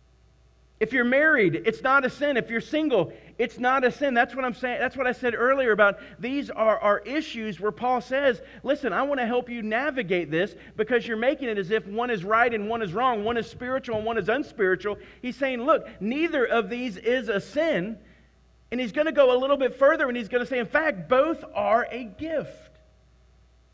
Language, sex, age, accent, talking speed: English, male, 40-59, American, 220 wpm